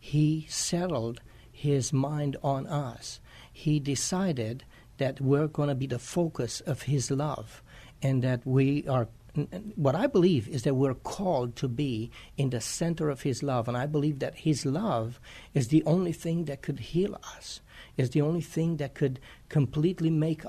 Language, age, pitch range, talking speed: English, 60-79, 125-155 Hz, 175 wpm